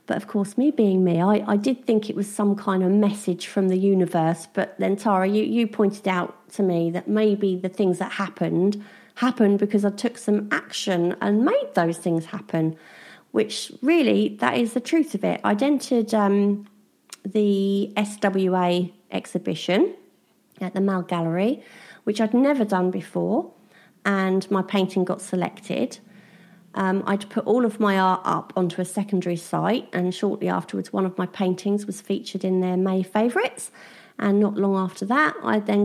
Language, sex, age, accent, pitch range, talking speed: English, female, 30-49, British, 190-225 Hz, 175 wpm